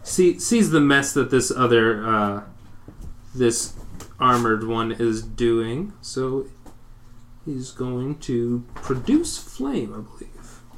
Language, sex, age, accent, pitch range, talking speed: English, male, 30-49, American, 110-130 Hz, 115 wpm